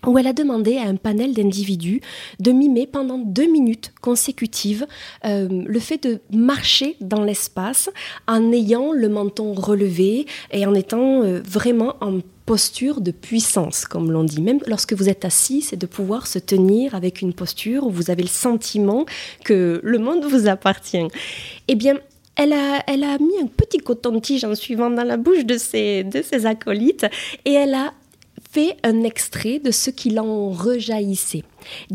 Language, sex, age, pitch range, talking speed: French, female, 20-39, 200-265 Hz, 175 wpm